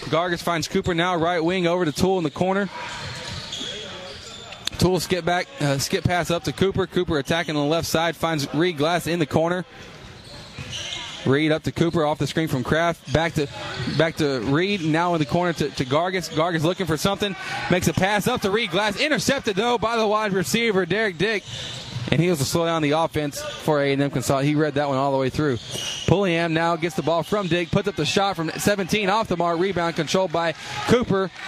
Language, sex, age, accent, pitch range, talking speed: English, male, 20-39, American, 145-180 Hz, 215 wpm